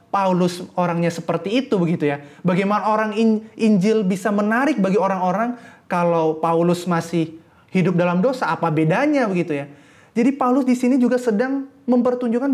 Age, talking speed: 20-39, 145 wpm